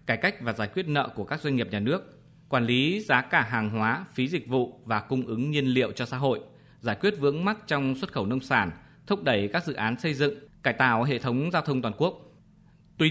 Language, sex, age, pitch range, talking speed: Vietnamese, male, 20-39, 115-155 Hz, 245 wpm